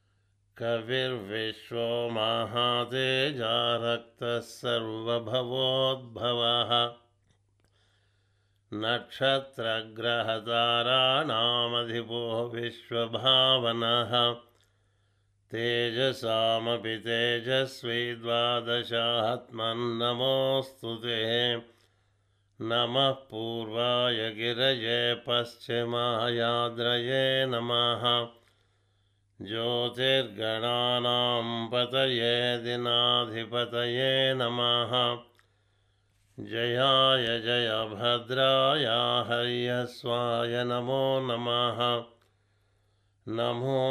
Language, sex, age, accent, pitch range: Telugu, male, 50-69, native, 115-120 Hz